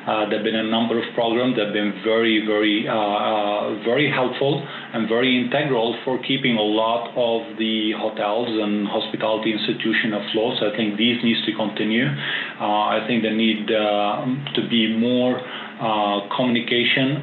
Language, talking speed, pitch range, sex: English, 170 wpm, 105-120 Hz, male